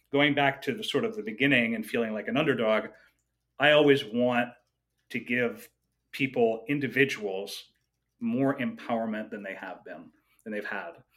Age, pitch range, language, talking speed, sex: 30-49, 125-150 Hz, English, 155 wpm, male